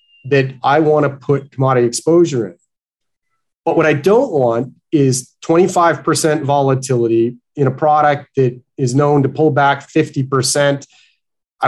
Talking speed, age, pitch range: 135 wpm, 30-49, 125-150 Hz